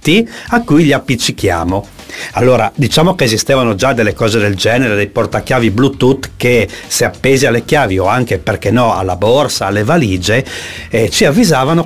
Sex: male